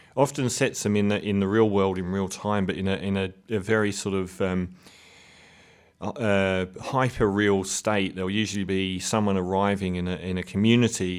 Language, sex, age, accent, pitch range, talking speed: English, male, 30-49, British, 95-110 Hz, 195 wpm